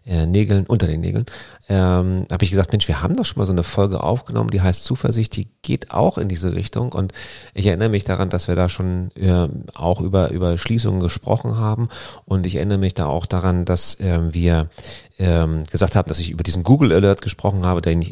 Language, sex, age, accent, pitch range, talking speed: German, male, 40-59, German, 85-105 Hz, 220 wpm